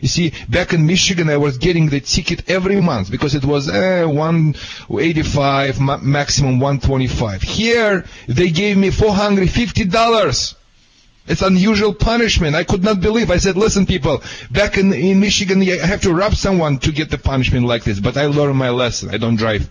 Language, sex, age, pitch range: English, male, 40-59, 115-155 Hz